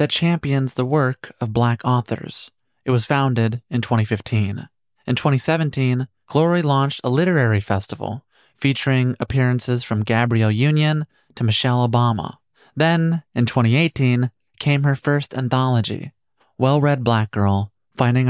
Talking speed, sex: 125 wpm, male